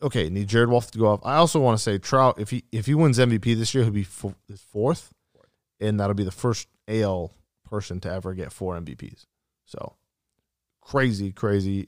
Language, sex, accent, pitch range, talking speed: English, male, American, 100-120 Hz, 195 wpm